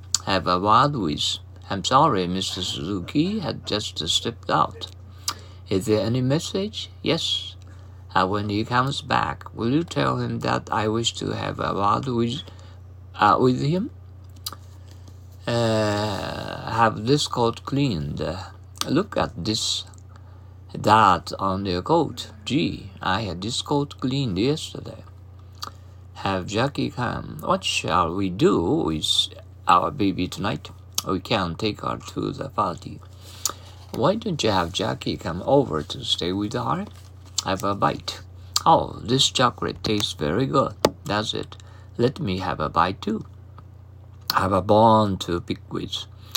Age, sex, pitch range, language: 50-69, male, 95-110 Hz, Japanese